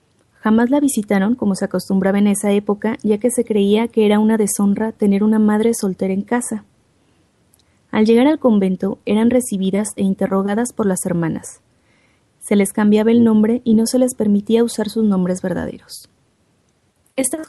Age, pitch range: 20-39, 200-230 Hz